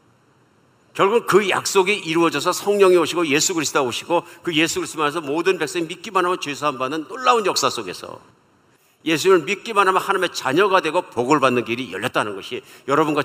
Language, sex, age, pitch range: Korean, male, 50-69, 130-185 Hz